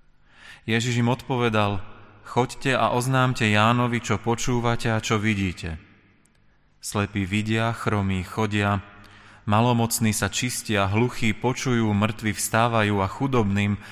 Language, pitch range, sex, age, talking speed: Slovak, 100-120 Hz, male, 30-49, 110 wpm